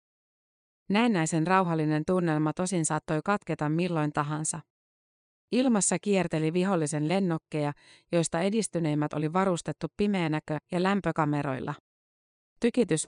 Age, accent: 30-49, native